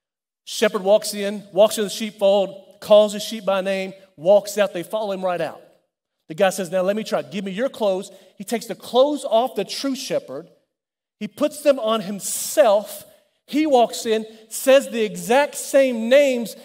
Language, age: English, 40-59